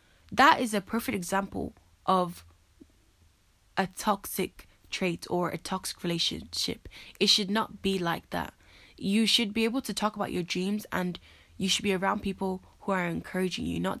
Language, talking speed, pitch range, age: English, 165 wpm, 170-200 Hz, 10-29